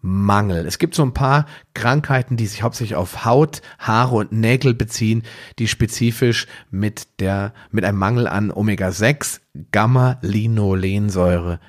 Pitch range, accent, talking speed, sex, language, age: 105-135 Hz, German, 130 wpm, male, German, 40-59